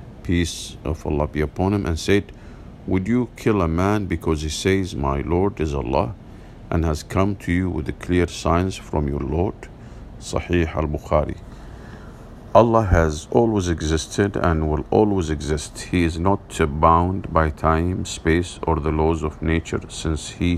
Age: 50-69